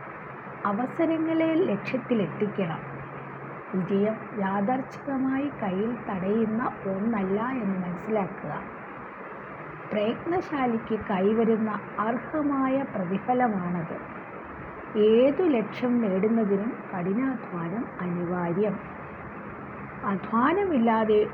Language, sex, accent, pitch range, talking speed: Malayalam, female, native, 185-240 Hz, 55 wpm